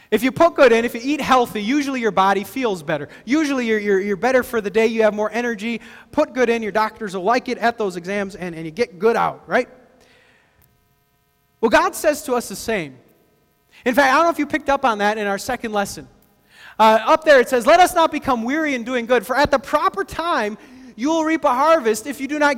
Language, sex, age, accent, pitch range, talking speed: English, male, 30-49, American, 215-295 Hz, 245 wpm